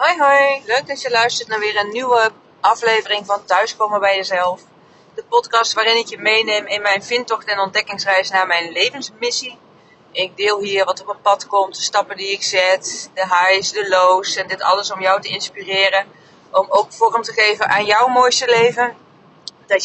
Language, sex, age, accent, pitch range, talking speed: Dutch, female, 30-49, Dutch, 190-215 Hz, 190 wpm